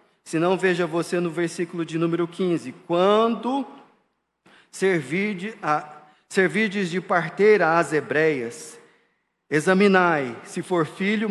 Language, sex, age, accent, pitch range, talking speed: Portuguese, male, 40-59, Brazilian, 140-175 Hz, 100 wpm